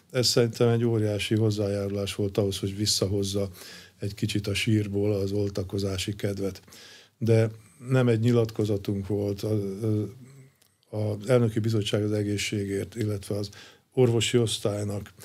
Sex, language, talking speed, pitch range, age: male, Hungarian, 120 wpm, 100-115 Hz, 50-69